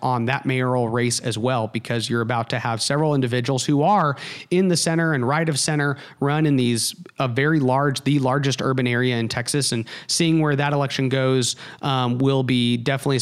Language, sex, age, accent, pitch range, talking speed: English, male, 30-49, American, 120-145 Hz, 200 wpm